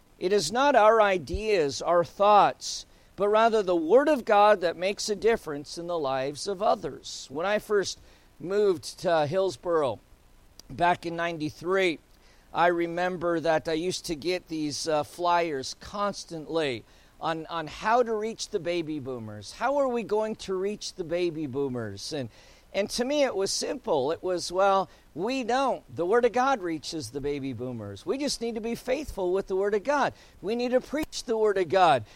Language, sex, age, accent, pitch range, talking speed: English, male, 50-69, American, 165-215 Hz, 180 wpm